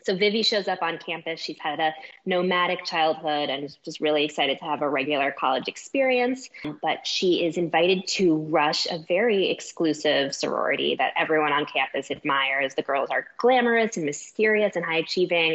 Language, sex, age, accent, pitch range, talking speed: English, female, 20-39, American, 150-195 Hz, 180 wpm